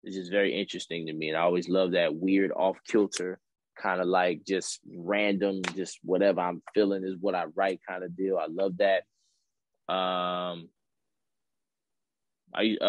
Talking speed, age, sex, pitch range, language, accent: 165 wpm, 20-39, male, 90-95 Hz, English, American